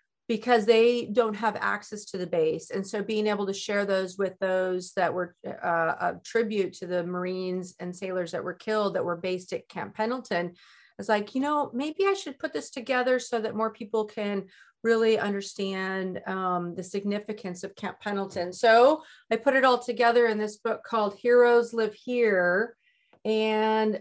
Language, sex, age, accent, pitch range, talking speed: English, female, 40-59, American, 195-235 Hz, 185 wpm